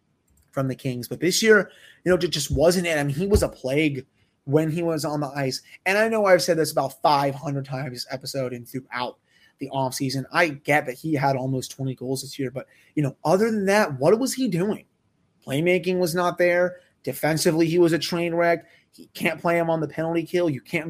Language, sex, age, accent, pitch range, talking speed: English, male, 30-49, American, 135-170 Hz, 220 wpm